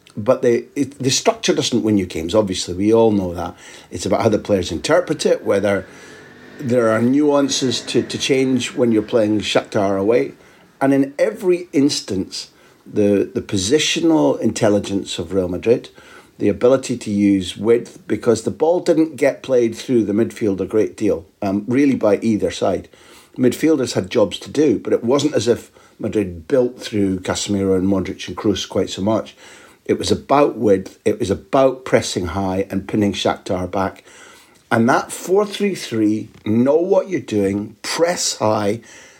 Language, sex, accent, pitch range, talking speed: English, male, British, 100-130 Hz, 165 wpm